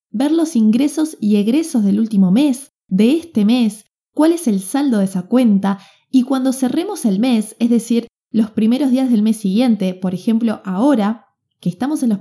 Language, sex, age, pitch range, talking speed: Spanish, female, 20-39, 210-285 Hz, 185 wpm